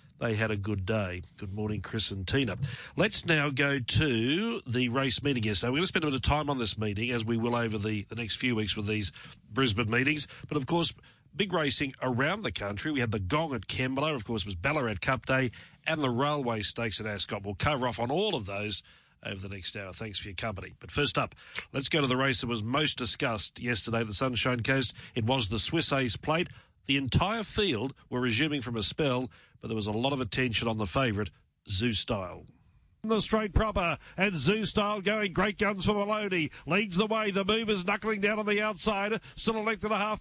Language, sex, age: English, male, 40-59